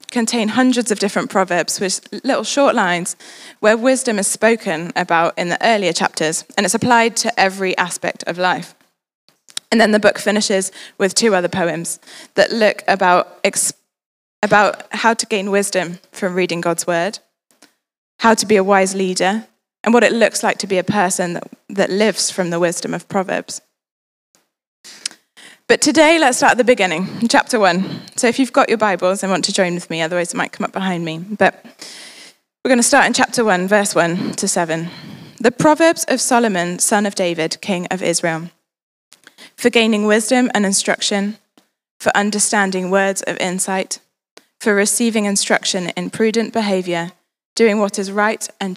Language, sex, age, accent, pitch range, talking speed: English, female, 10-29, British, 185-230 Hz, 175 wpm